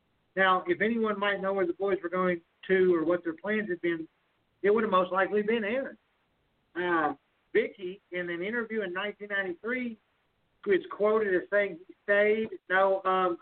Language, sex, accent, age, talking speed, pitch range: English, male, American, 50-69, 175 wpm, 180-210 Hz